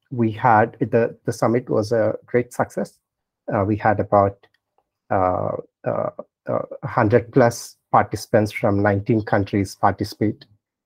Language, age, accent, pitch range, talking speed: English, 30-49, Indian, 100-120 Hz, 135 wpm